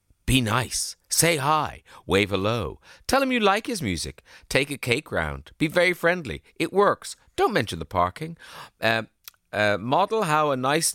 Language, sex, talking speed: English, male, 170 wpm